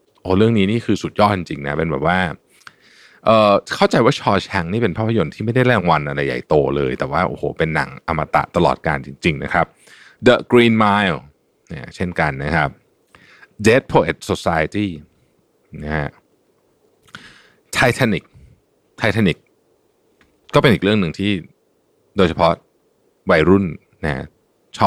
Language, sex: Thai, male